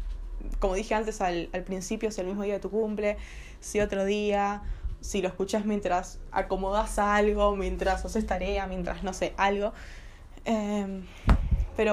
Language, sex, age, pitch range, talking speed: Spanish, female, 20-39, 190-230 Hz, 155 wpm